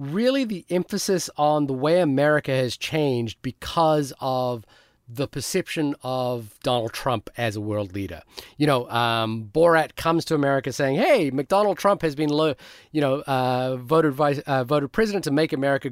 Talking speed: 165 wpm